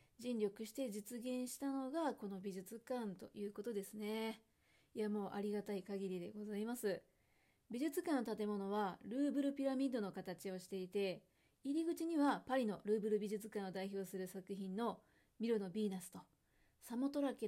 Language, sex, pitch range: Japanese, female, 200-260 Hz